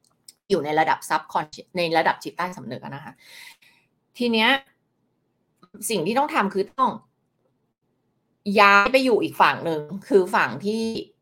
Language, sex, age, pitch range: Thai, female, 20-39, 175-230 Hz